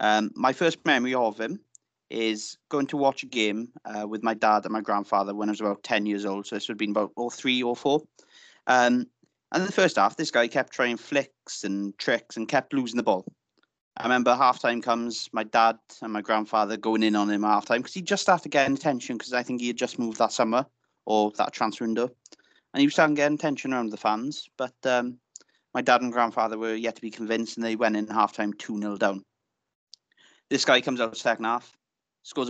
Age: 30-49